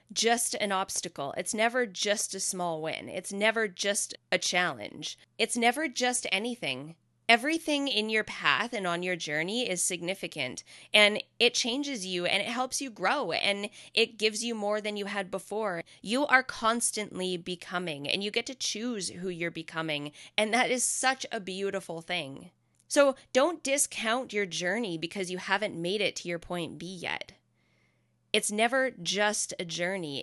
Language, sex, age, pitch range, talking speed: English, female, 20-39, 165-220 Hz, 170 wpm